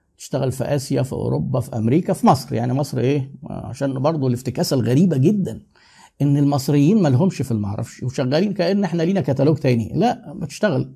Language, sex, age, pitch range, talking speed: Arabic, male, 50-69, 130-180 Hz, 170 wpm